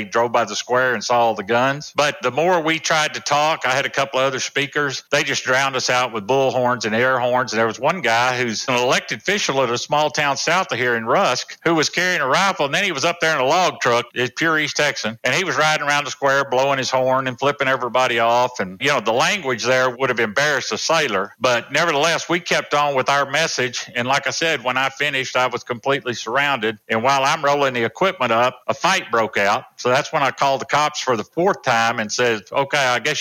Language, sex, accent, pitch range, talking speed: English, male, American, 120-145 Hz, 250 wpm